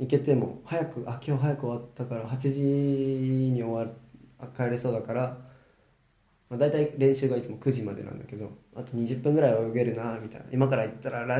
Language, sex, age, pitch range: Japanese, male, 20-39, 105-140 Hz